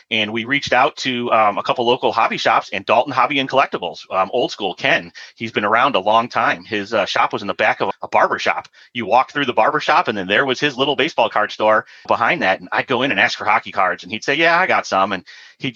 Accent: American